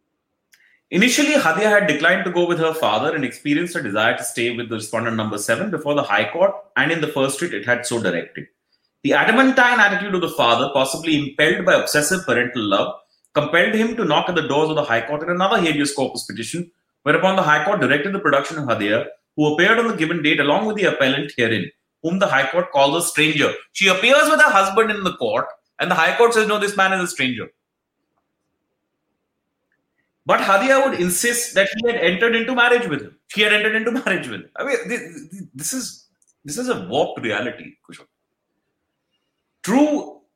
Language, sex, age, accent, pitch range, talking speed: English, male, 30-49, Indian, 150-215 Hz, 205 wpm